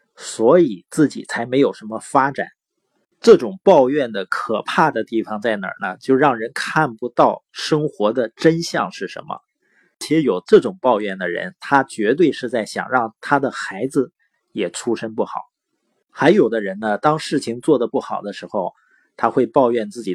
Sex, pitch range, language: male, 125-195 Hz, Chinese